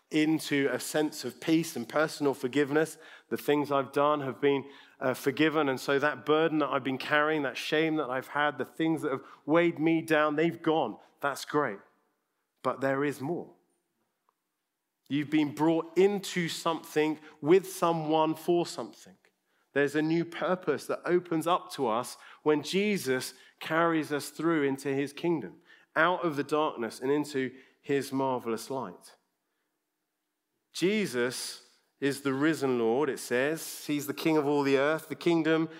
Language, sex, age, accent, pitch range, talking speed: English, male, 40-59, British, 140-170 Hz, 160 wpm